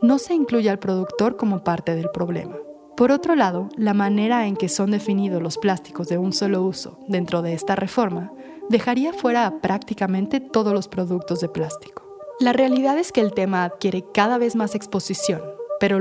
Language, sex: Spanish, female